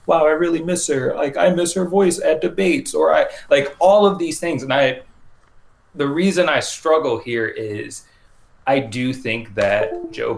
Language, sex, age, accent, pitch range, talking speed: English, male, 30-49, American, 110-150 Hz, 185 wpm